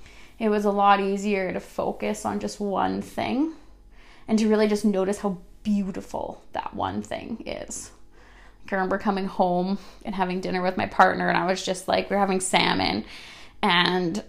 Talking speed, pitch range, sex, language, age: 170 wpm, 200-245 Hz, female, English, 20-39